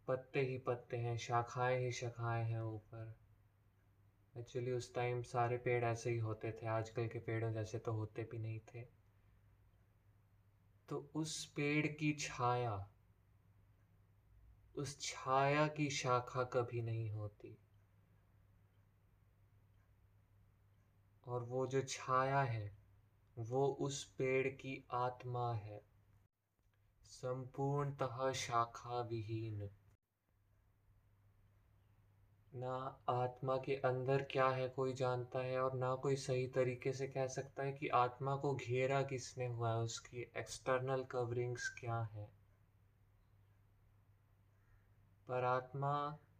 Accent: native